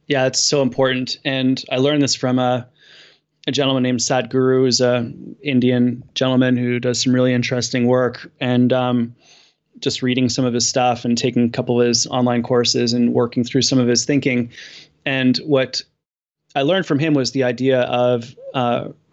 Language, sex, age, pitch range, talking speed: English, male, 20-39, 120-140 Hz, 180 wpm